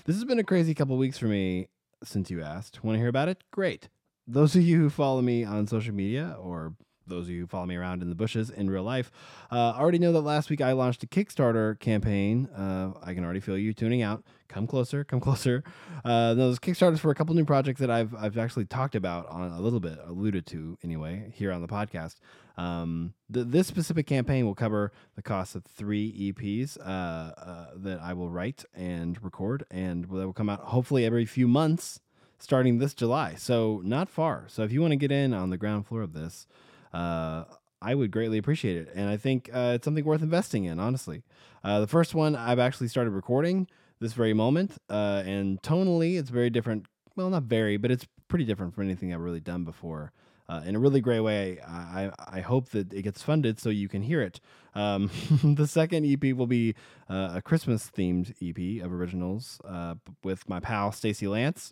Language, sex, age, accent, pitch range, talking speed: English, male, 20-39, American, 95-135 Hz, 215 wpm